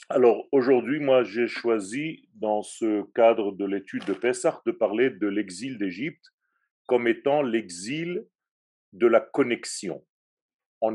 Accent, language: French, French